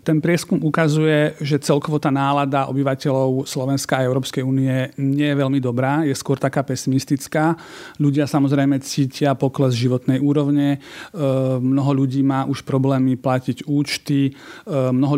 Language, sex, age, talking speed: Slovak, male, 40-59, 130 wpm